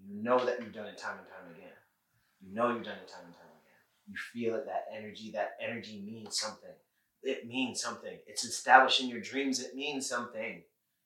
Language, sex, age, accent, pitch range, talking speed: English, male, 20-39, American, 120-140 Hz, 205 wpm